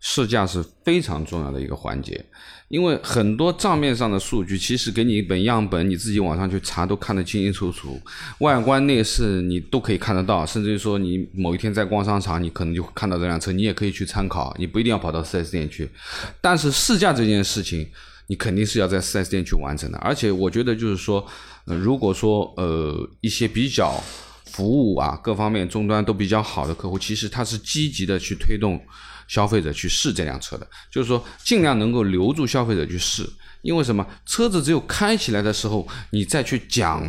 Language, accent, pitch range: Chinese, native, 95-115 Hz